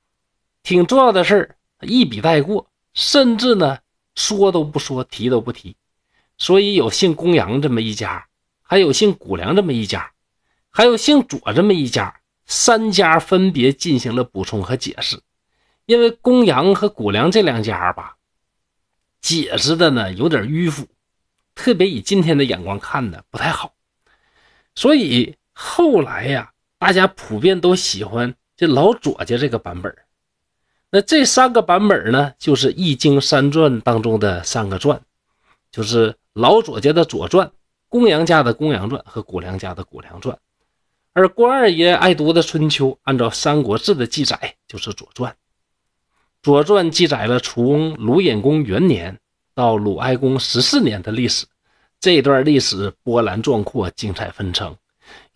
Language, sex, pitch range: Chinese, male, 115-185 Hz